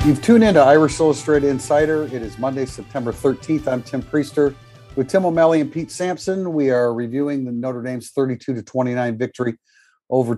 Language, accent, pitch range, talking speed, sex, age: English, American, 120-150 Hz, 175 wpm, male, 50-69